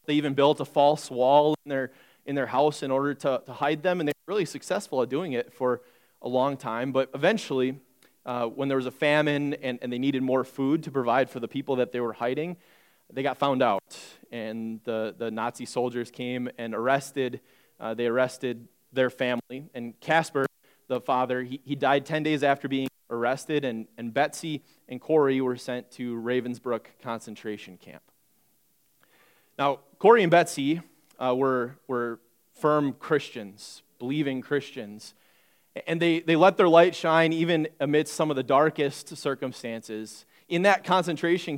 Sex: male